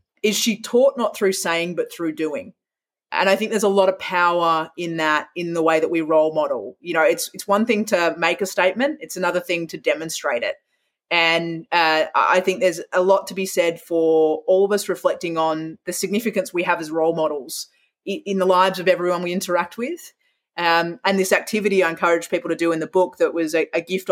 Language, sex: English, female